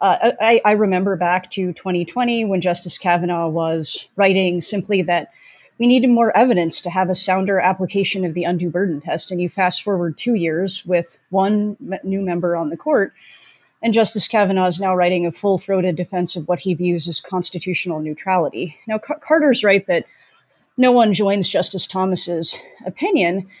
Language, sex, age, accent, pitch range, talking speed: English, female, 30-49, American, 175-205 Hz, 175 wpm